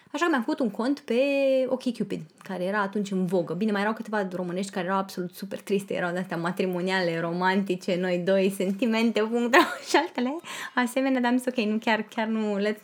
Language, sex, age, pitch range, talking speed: Romanian, female, 20-39, 200-255 Hz, 200 wpm